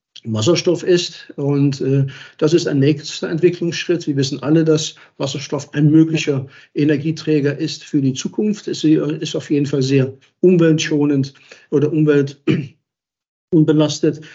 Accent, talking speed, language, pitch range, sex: German, 130 wpm, German, 145-165 Hz, male